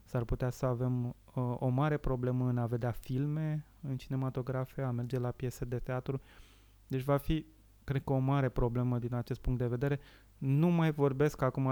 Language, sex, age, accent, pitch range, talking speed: Romanian, male, 20-39, native, 115-135 Hz, 190 wpm